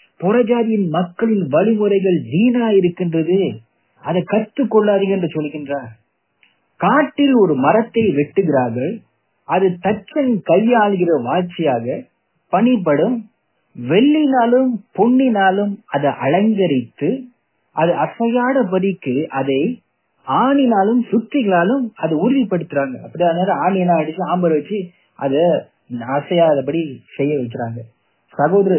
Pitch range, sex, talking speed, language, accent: 140-200 Hz, male, 85 wpm, English, Indian